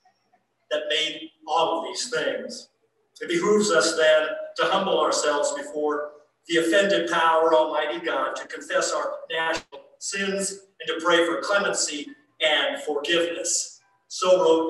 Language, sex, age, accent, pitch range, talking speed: English, male, 50-69, American, 165-265 Hz, 135 wpm